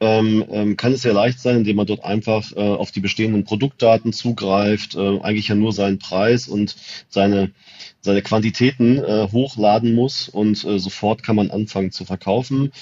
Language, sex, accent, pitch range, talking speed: German, male, German, 100-120 Hz, 150 wpm